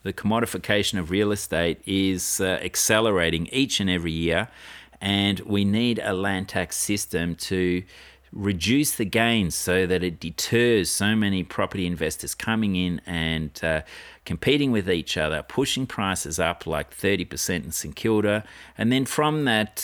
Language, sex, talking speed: English, male, 155 wpm